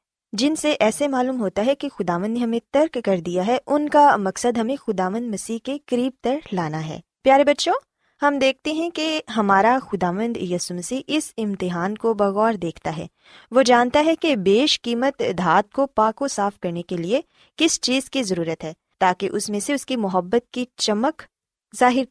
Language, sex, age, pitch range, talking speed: Punjabi, female, 20-39, 195-270 Hz, 190 wpm